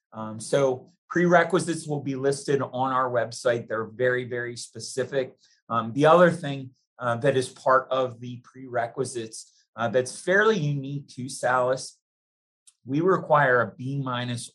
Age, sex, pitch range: 30-49, male, 120-145 Hz